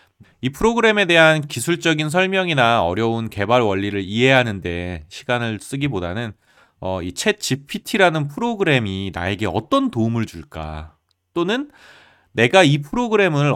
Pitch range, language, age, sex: 95-155 Hz, Korean, 30-49, male